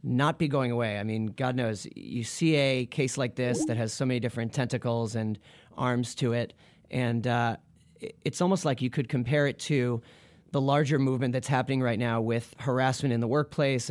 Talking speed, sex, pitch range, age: 200 wpm, male, 120-145 Hz, 30-49